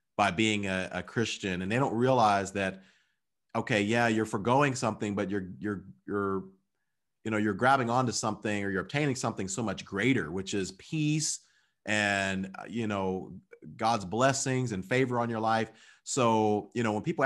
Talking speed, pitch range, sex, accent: 175 wpm, 100-120 Hz, male, American